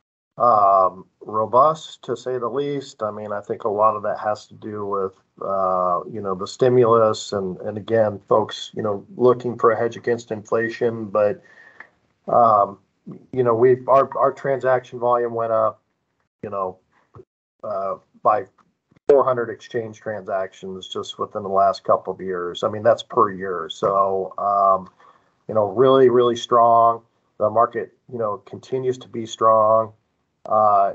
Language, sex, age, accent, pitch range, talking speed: English, male, 50-69, American, 100-120 Hz, 155 wpm